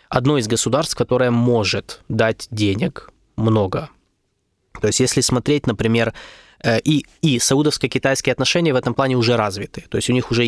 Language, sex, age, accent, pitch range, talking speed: Russian, male, 20-39, native, 105-125 Hz, 155 wpm